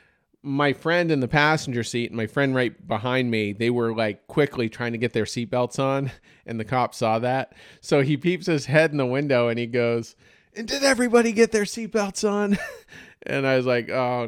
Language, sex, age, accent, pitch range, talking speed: English, male, 40-59, American, 110-140 Hz, 210 wpm